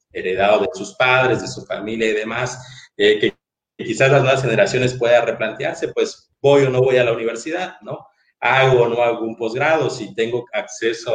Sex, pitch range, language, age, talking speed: male, 110-135 Hz, Spanish, 40-59, 190 wpm